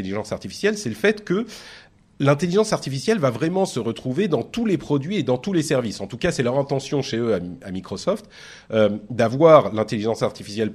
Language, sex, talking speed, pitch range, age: French, male, 205 wpm, 105-150 Hz, 30-49